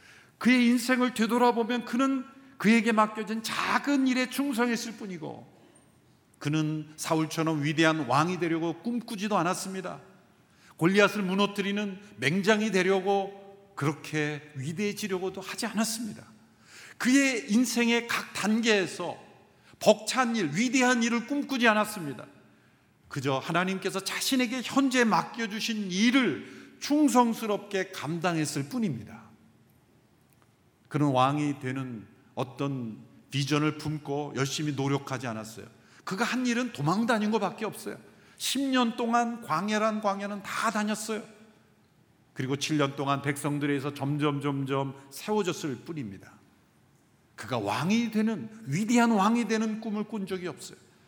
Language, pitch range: Korean, 150-230 Hz